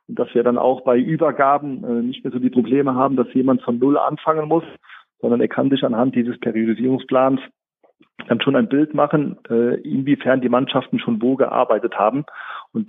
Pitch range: 115-150 Hz